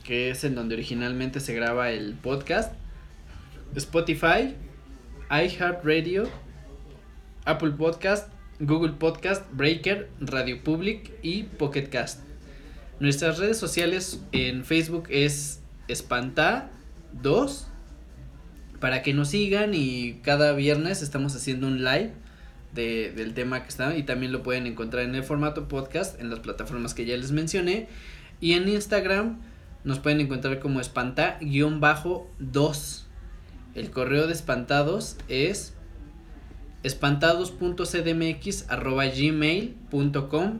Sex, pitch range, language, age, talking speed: male, 125-160 Hz, Spanish, 20-39, 110 wpm